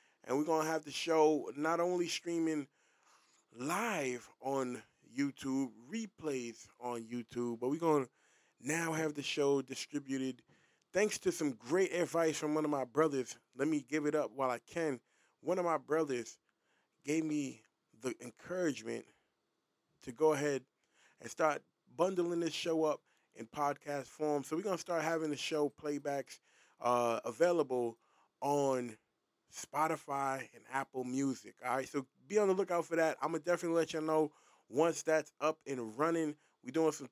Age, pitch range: 20-39, 140-165 Hz